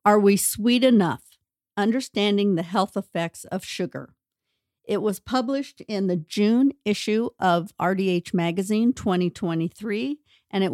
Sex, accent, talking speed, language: female, American, 130 wpm, English